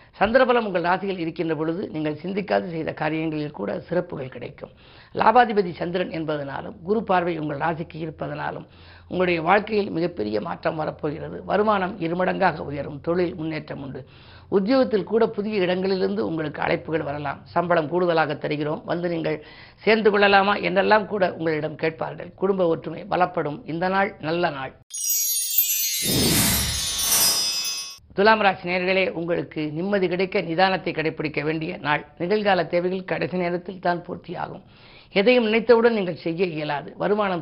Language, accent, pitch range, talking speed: Tamil, native, 155-190 Hz, 115 wpm